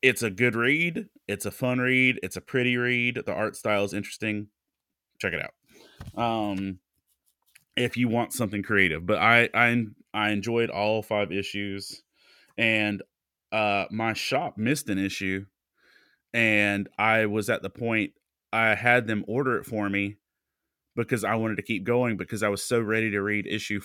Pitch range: 100-120 Hz